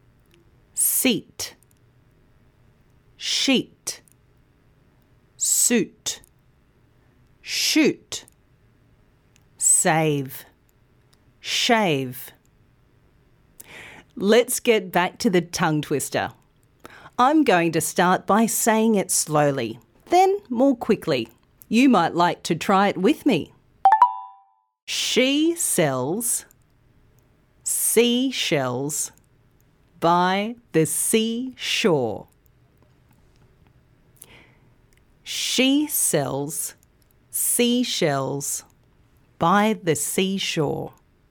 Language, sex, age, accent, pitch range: Korean, female, 40-59, Australian, 145-235 Hz